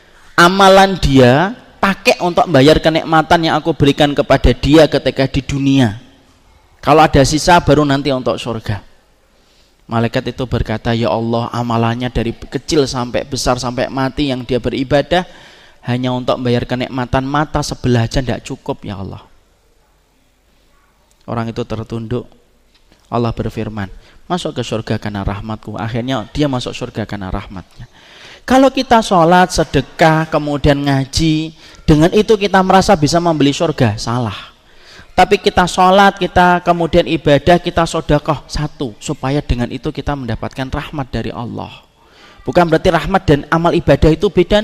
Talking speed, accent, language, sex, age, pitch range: 135 wpm, native, Indonesian, male, 20-39, 120-175 Hz